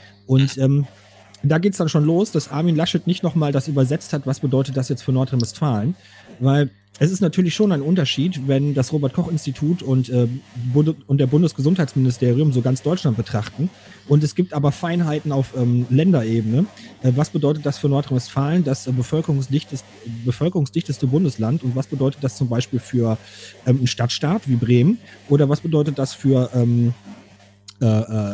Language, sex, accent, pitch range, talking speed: German, male, German, 120-160 Hz, 165 wpm